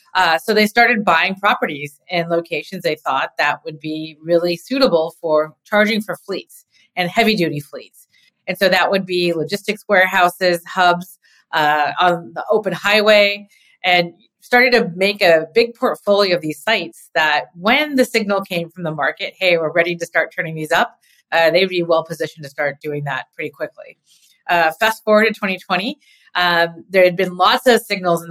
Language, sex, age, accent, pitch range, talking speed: English, female, 30-49, American, 165-205 Hz, 180 wpm